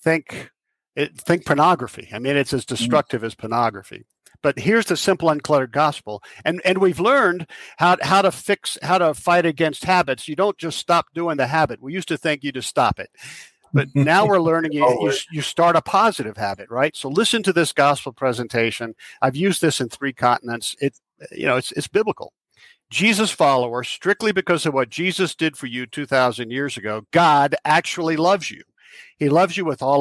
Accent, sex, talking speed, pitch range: American, male, 190 wpm, 130-175 Hz